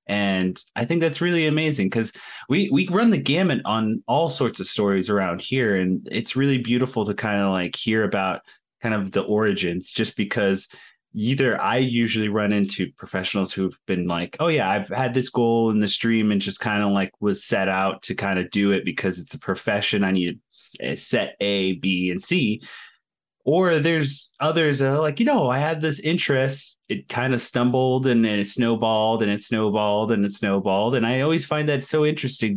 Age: 30-49